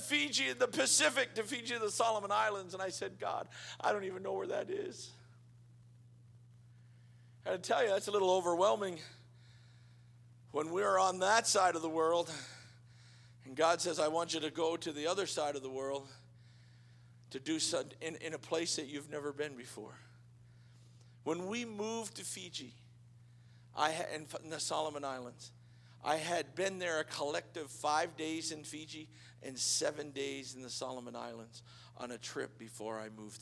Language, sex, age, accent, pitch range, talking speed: English, male, 50-69, American, 120-160 Hz, 170 wpm